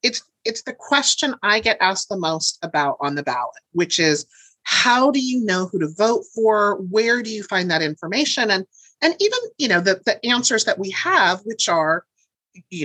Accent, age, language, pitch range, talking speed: American, 30-49, English, 160-245 Hz, 200 wpm